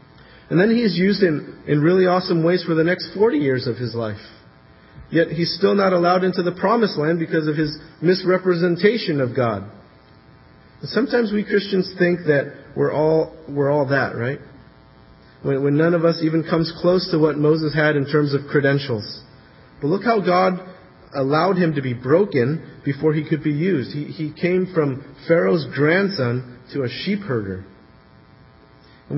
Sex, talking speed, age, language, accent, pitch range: male, 175 wpm, 40-59, English, American, 145-185 Hz